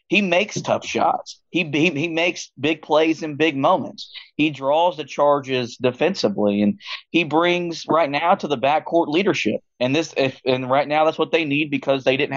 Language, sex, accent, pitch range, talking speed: English, male, American, 130-160 Hz, 195 wpm